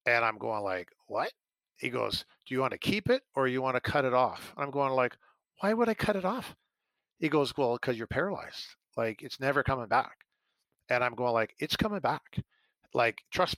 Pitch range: 115-135 Hz